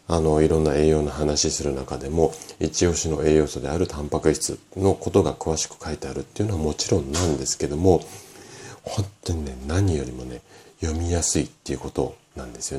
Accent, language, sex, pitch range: native, Japanese, male, 75-100 Hz